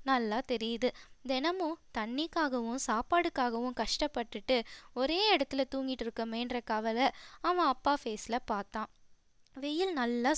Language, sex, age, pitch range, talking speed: Tamil, female, 20-39, 245-330 Hz, 100 wpm